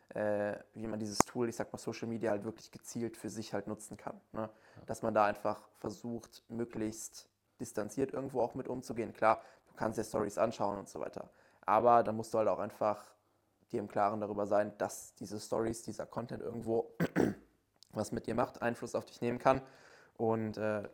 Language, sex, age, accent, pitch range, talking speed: German, male, 20-39, German, 105-115 Hz, 190 wpm